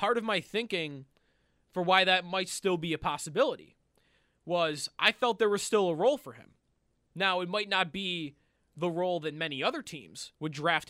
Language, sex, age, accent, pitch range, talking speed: English, male, 20-39, American, 155-205 Hz, 195 wpm